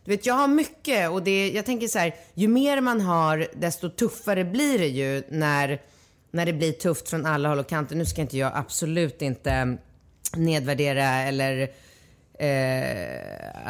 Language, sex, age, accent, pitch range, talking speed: Swedish, female, 30-49, native, 145-190 Hz, 170 wpm